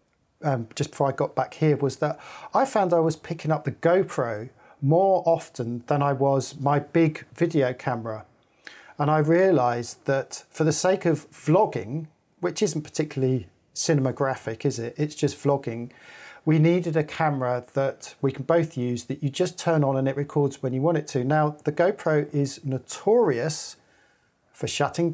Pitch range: 130-155 Hz